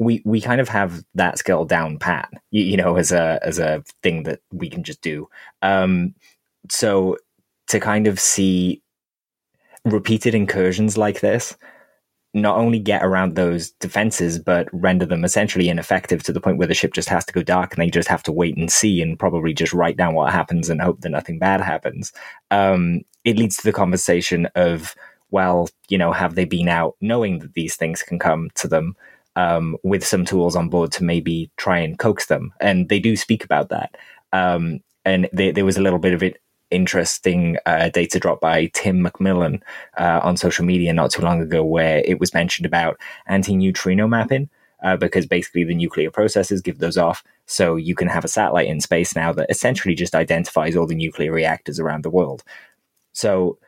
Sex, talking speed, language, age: male, 200 wpm, English, 20-39